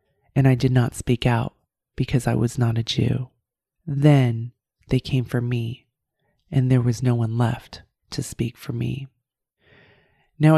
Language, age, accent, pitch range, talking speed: English, 20-39, American, 120-145 Hz, 160 wpm